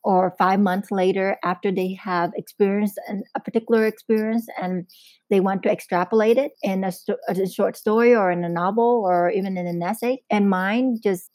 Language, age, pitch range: English, 30-49, 180-215 Hz